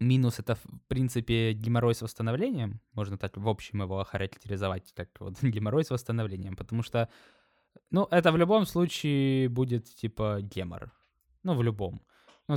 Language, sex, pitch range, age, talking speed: Ukrainian, male, 110-130 Hz, 20-39, 155 wpm